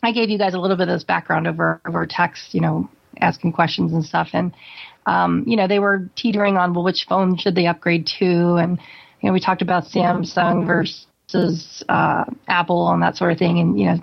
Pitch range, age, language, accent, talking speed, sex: 175-210 Hz, 30-49, English, American, 225 wpm, female